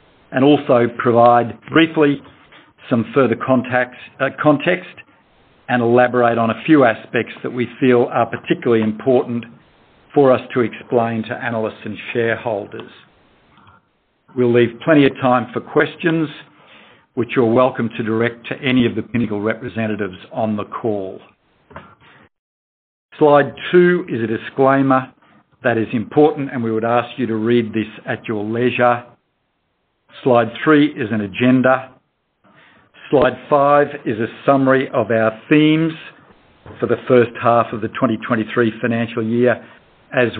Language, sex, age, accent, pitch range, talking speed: English, male, 50-69, Australian, 115-140 Hz, 135 wpm